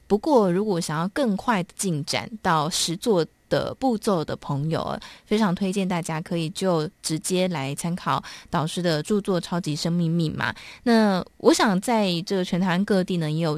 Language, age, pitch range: Chinese, 20-39, 165-205 Hz